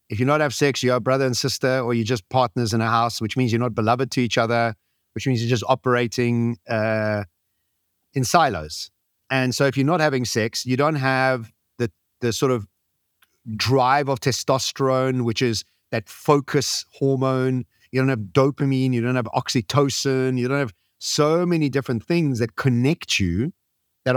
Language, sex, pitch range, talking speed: English, male, 115-140 Hz, 185 wpm